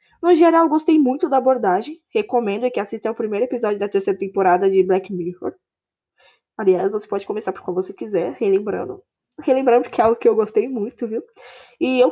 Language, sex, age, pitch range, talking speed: Portuguese, female, 10-29, 210-310 Hz, 190 wpm